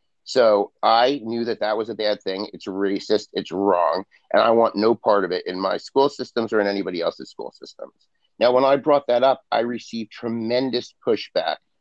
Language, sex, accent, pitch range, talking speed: English, male, American, 110-135 Hz, 205 wpm